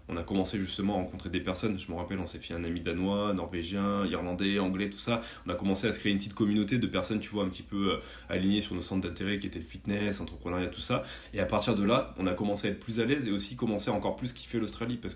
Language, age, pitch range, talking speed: French, 20-39, 90-105 Hz, 285 wpm